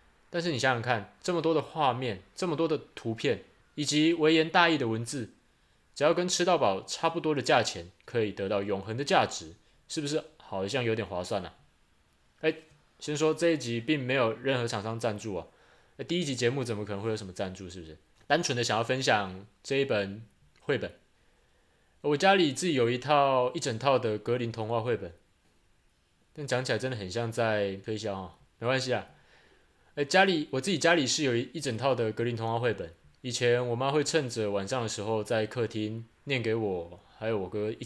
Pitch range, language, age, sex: 105-150 Hz, Chinese, 20-39, male